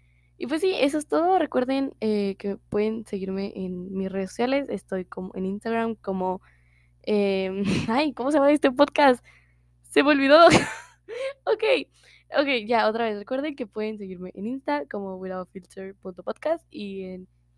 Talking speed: 155 wpm